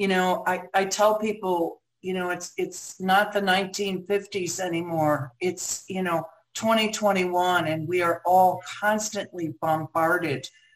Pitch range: 160-190 Hz